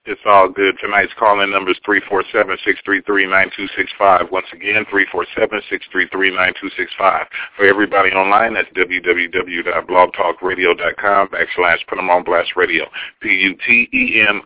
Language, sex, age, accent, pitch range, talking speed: English, male, 40-59, American, 95-105 Hz, 100 wpm